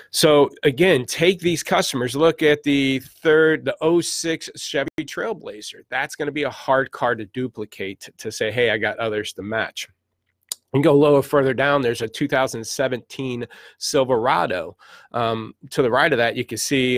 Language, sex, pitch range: English, male, 110-145 Hz